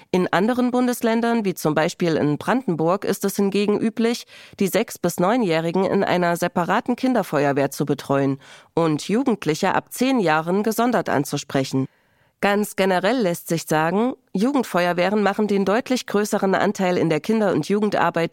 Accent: German